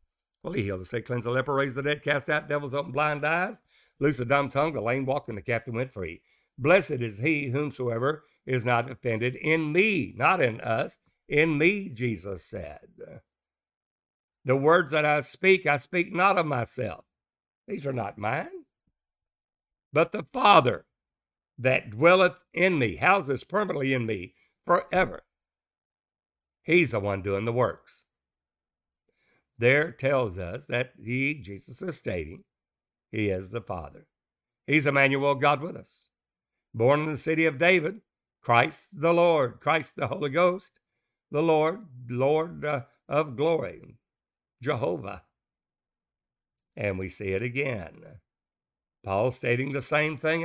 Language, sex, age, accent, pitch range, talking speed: English, male, 60-79, American, 110-155 Hz, 145 wpm